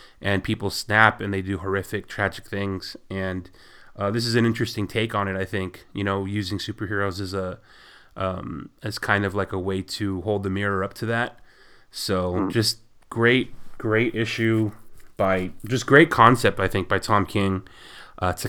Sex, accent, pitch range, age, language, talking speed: male, American, 95-115 Hz, 30-49, English, 185 wpm